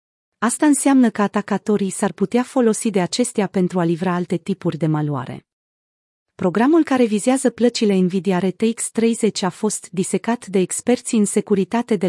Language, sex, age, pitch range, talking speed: Romanian, female, 30-49, 175-225 Hz, 155 wpm